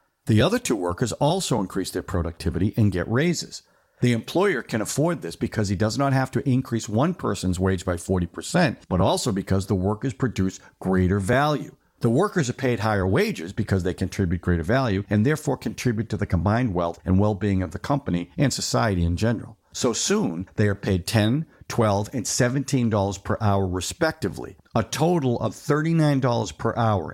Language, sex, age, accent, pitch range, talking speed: English, male, 50-69, American, 100-135 Hz, 180 wpm